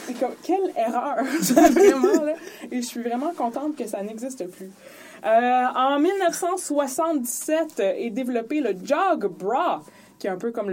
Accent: Canadian